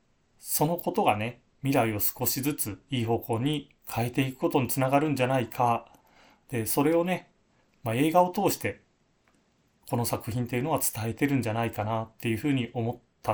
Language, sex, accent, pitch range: Japanese, male, native, 110-140 Hz